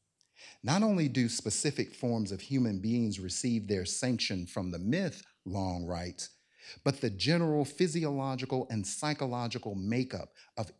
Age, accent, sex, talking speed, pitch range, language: 50-69, American, male, 135 wpm, 100-135 Hz, English